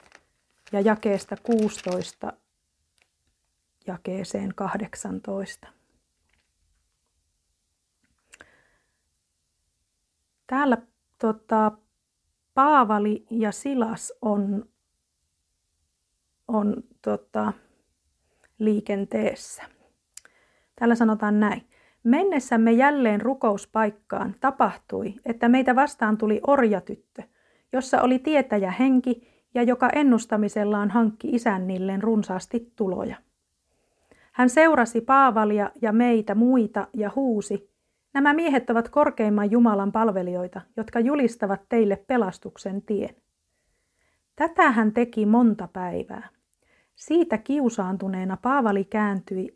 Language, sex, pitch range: Finnish, female, 185-240 Hz